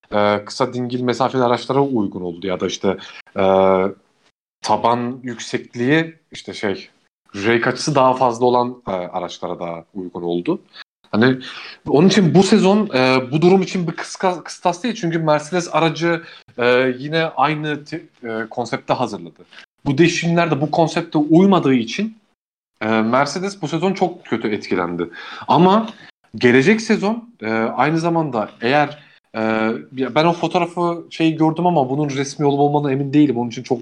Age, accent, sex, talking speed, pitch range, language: 40-59, native, male, 145 wpm, 115-165 Hz, Turkish